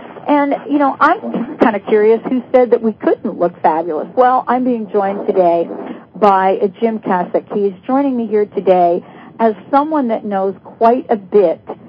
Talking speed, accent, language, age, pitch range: 170 wpm, American, English, 50-69, 195-245 Hz